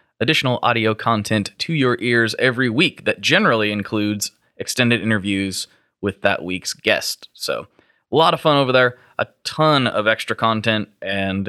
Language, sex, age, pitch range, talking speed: English, male, 20-39, 110-140 Hz, 155 wpm